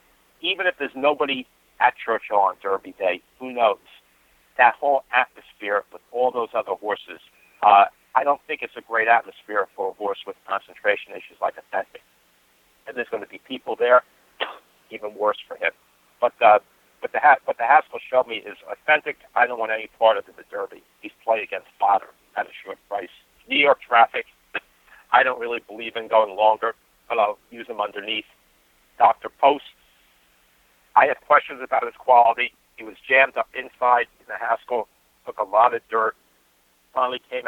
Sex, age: male, 60-79